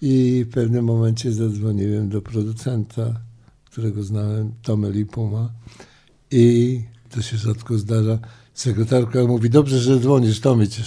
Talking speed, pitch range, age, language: 125 wpm, 110-125 Hz, 60-79, Polish